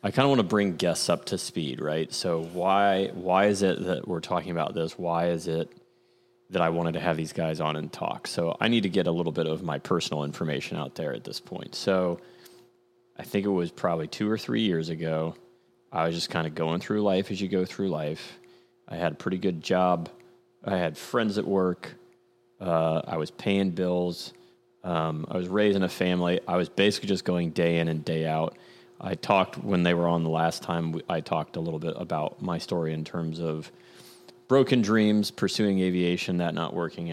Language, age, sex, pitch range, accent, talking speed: English, 30-49, male, 85-105 Hz, American, 215 wpm